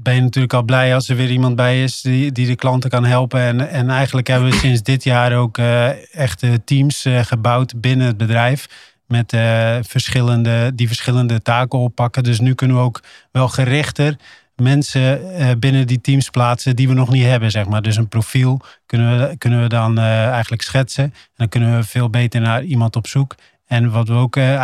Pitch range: 115-130 Hz